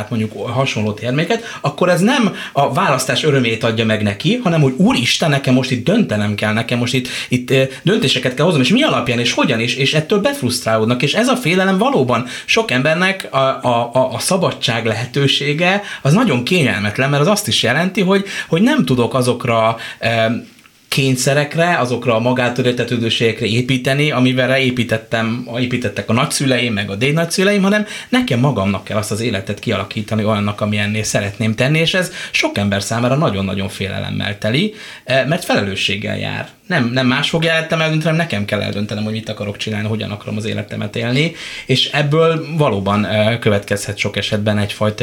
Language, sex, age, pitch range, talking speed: Hungarian, male, 30-49, 105-140 Hz, 165 wpm